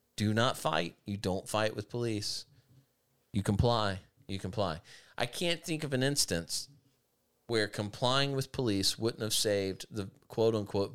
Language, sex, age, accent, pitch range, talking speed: English, male, 40-59, American, 95-120 Hz, 155 wpm